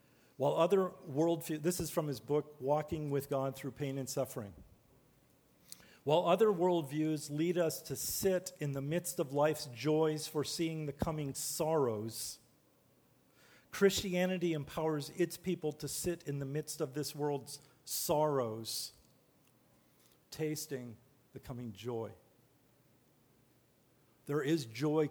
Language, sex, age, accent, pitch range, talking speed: English, male, 50-69, American, 135-170 Hz, 125 wpm